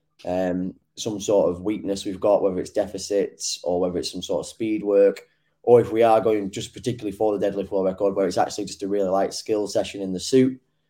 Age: 10-29